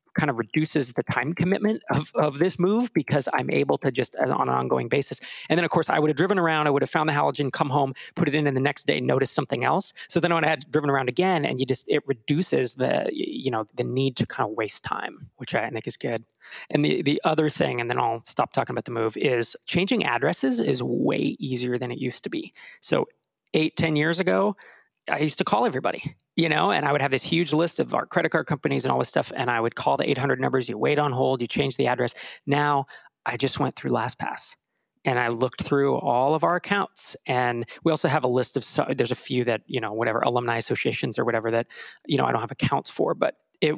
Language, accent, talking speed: English, American, 255 wpm